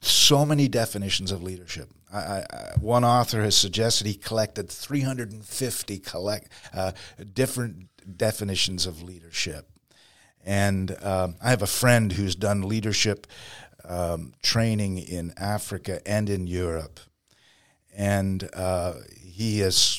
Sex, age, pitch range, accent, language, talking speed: male, 50-69, 95-115 Hz, American, French, 110 wpm